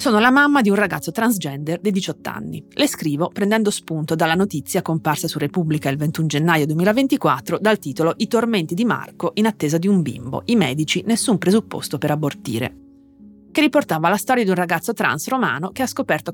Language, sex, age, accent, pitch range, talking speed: Italian, female, 30-49, native, 155-210 Hz, 190 wpm